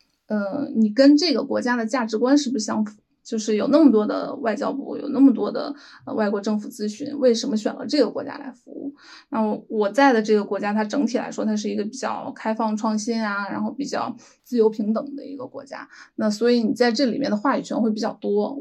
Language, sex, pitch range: Chinese, female, 220-270 Hz